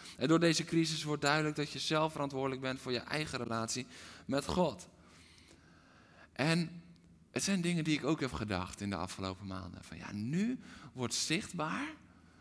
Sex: male